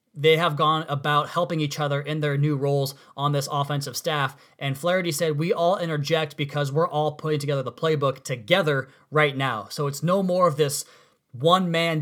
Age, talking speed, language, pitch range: 20-39, 190 wpm, English, 140-165 Hz